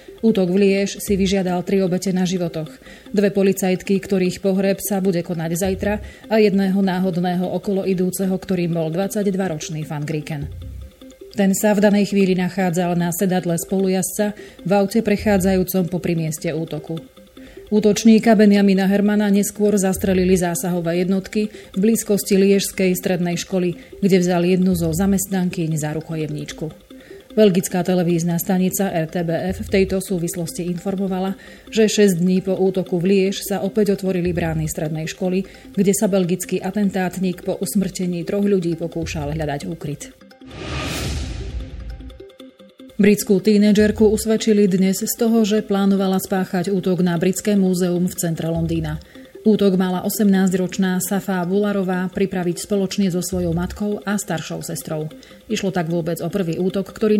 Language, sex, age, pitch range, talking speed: Slovak, female, 30-49, 175-200 Hz, 130 wpm